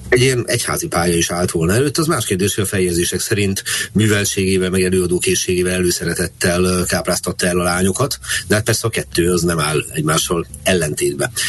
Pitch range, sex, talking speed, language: 90-110 Hz, male, 160 wpm, Hungarian